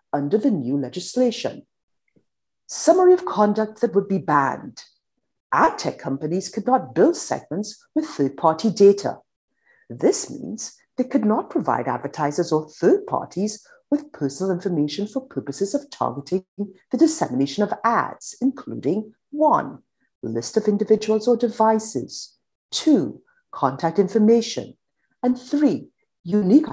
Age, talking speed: 50-69, 125 wpm